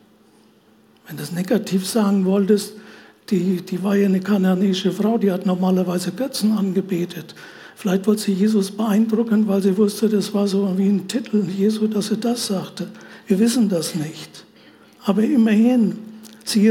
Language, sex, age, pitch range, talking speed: German, male, 60-79, 195-240 Hz, 155 wpm